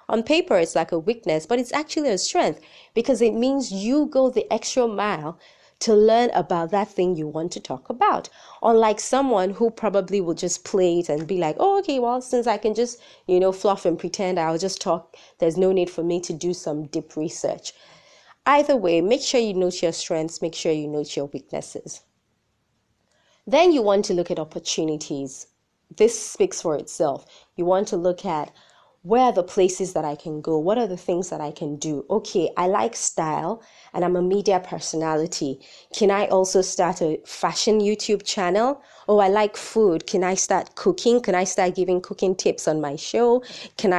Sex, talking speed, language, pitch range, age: female, 200 wpm, English, 165-215 Hz, 30-49